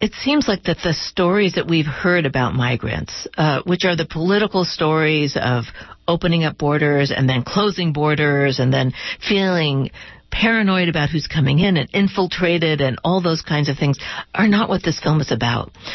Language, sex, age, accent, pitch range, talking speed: English, female, 50-69, American, 150-180 Hz, 180 wpm